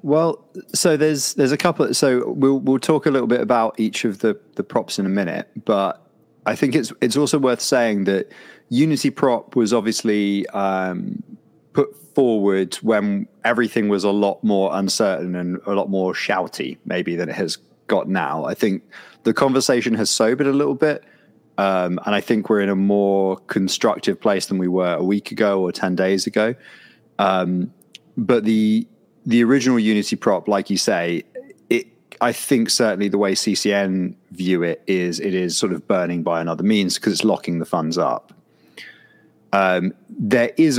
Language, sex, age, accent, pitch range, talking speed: English, male, 20-39, British, 95-125 Hz, 180 wpm